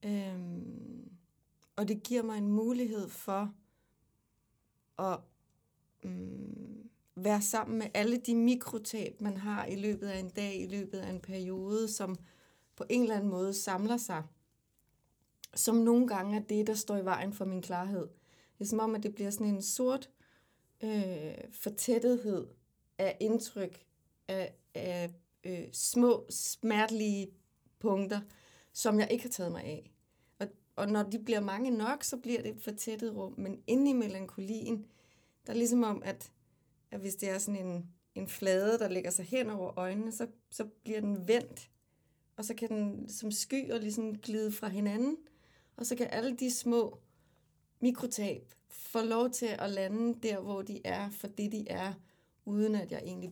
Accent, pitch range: native, 190-230 Hz